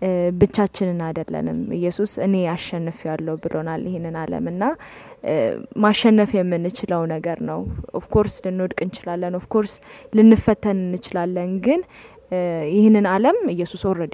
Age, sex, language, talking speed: 20-39, female, English, 90 wpm